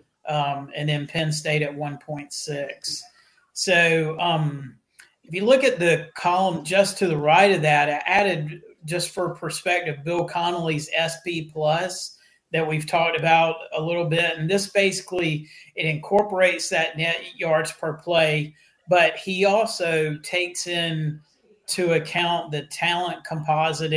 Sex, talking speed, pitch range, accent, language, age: male, 140 wpm, 150-175 Hz, American, English, 40-59